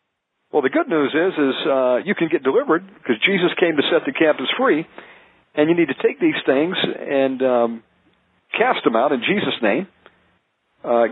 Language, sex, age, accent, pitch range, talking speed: English, male, 50-69, American, 140-195 Hz, 190 wpm